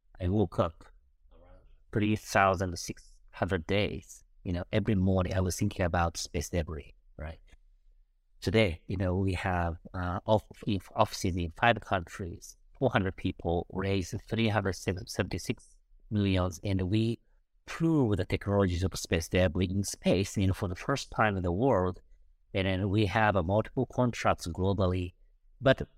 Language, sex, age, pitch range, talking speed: English, male, 50-69, 95-120 Hz, 135 wpm